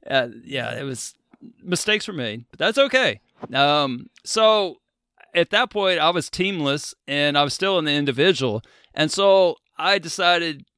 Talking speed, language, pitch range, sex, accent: 155 wpm, English, 135-180 Hz, male, American